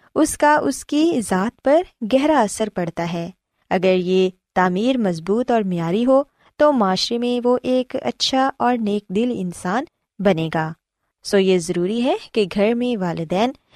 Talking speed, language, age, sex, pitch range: 160 wpm, Urdu, 20-39, female, 180-255 Hz